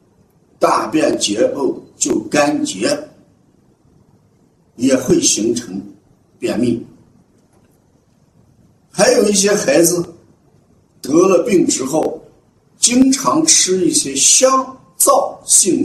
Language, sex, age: Chinese, male, 50-69